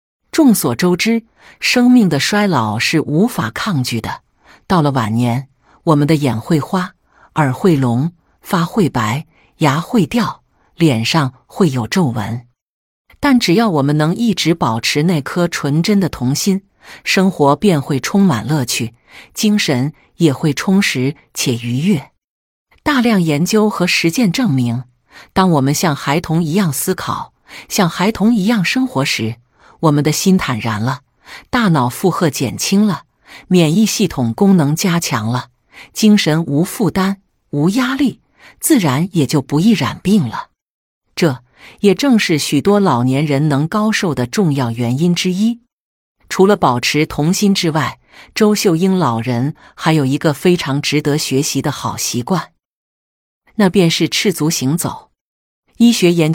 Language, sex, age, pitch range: Chinese, female, 50-69, 135-195 Hz